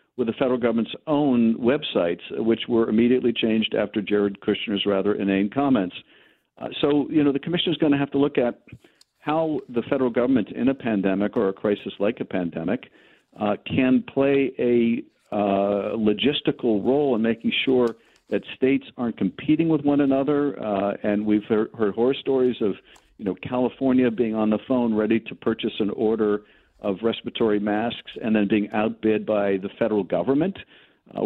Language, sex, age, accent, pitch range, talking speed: English, male, 50-69, American, 105-130 Hz, 175 wpm